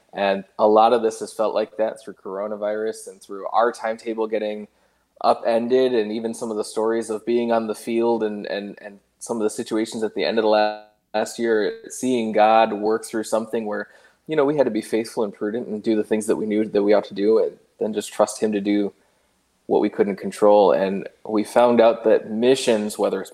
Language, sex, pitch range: English, male, 105-115 Hz